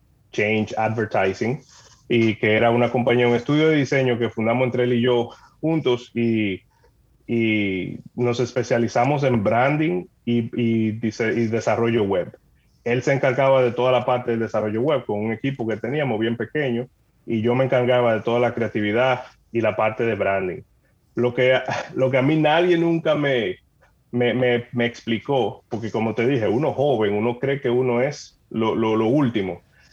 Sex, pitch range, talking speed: male, 110-130 Hz, 175 wpm